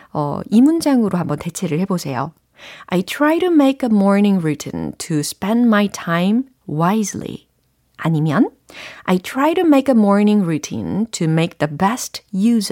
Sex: female